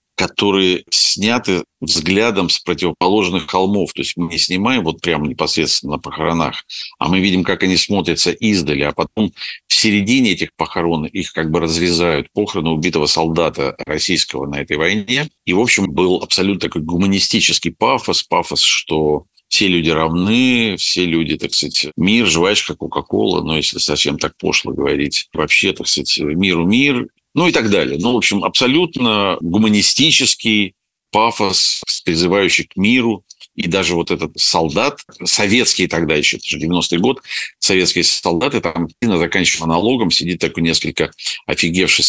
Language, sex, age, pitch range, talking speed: Russian, male, 50-69, 80-95 Hz, 150 wpm